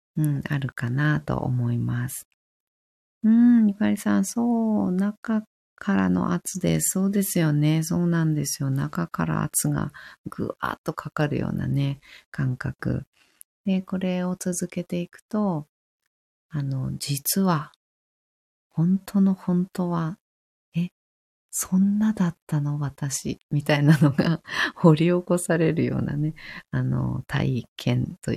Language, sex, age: Japanese, female, 30-49